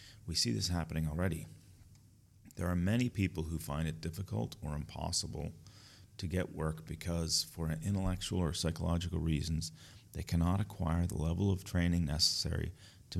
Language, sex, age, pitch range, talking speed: English, male, 40-59, 80-100 Hz, 150 wpm